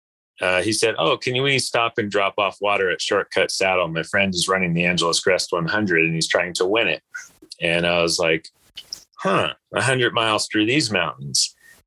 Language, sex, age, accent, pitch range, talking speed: English, male, 30-49, American, 85-115 Hz, 195 wpm